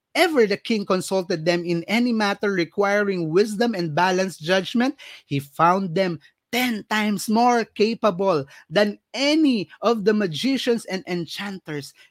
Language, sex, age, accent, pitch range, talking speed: Filipino, male, 20-39, native, 145-205 Hz, 135 wpm